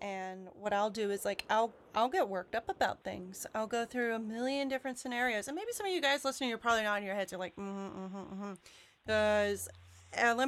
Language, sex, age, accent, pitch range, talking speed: English, female, 30-49, American, 205-270 Hz, 235 wpm